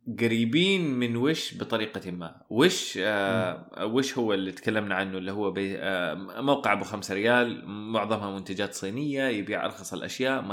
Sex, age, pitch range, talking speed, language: male, 20-39, 105-150 Hz, 155 wpm, Arabic